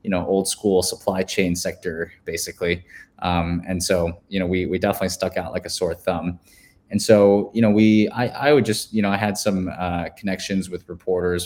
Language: English